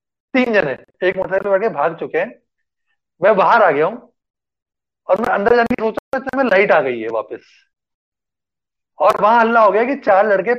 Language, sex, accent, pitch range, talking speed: English, male, Indian, 170-245 Hz, 200 wpm